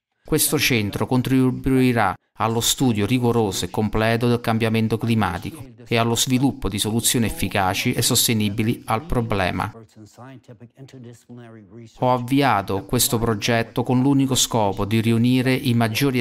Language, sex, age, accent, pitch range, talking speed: Italian, male, 40-59, native, 110-130 Hz, 120 wpm